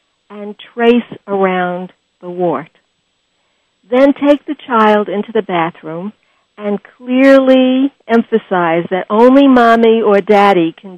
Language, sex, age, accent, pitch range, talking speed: English, female, 60-79, American, 185-235 Hz, 115 wpm